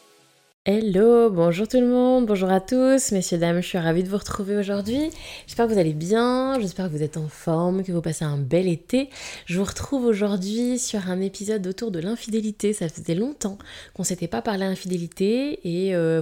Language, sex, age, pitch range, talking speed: French, female, 20-39, 160-200 Hz, 200 wpm